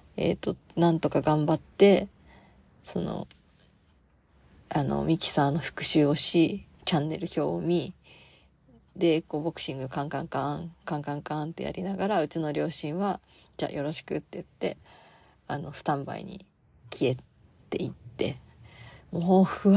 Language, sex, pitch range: Japanese, female, 150-195 Hz